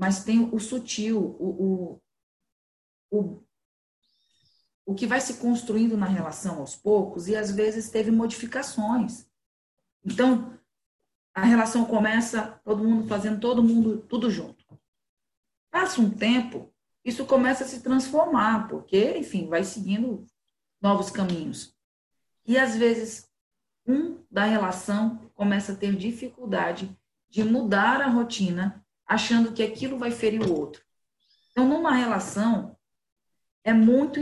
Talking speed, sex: 125 wpm, female